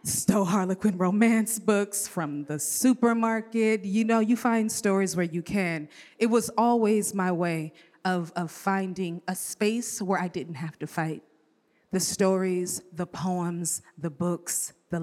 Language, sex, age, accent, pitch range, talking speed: English, female, 30-49, American, 170-200 Hz, 150 wpm